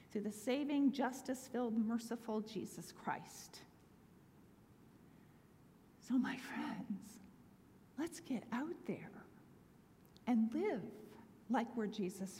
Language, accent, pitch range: English, American, 220-285 Hz